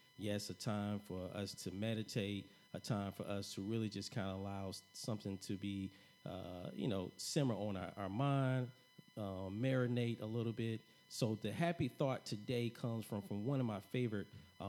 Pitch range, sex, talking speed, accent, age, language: 100-130 Hz, male, 185 wpm, American, 40-59, English